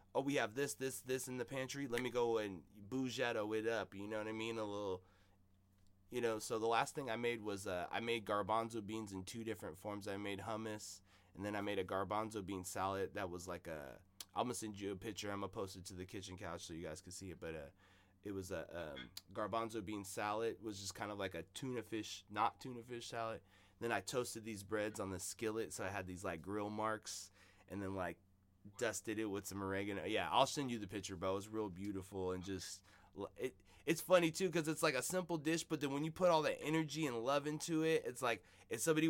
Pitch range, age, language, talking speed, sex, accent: 95-120 Hz, 20-39, English, 245 wpm, male, American